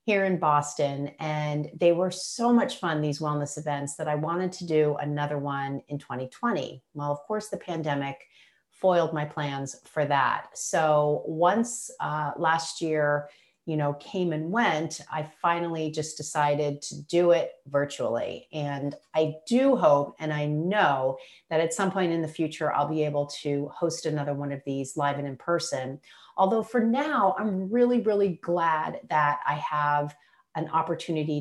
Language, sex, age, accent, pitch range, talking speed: English, female, 40-59, American, 145-175 Hz, 170 wpm